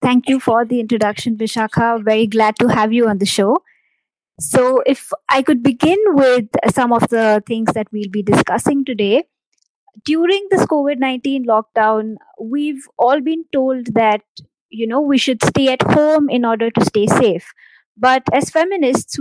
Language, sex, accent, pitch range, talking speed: English, female, Indian, 220-275 Hz, 165 wpm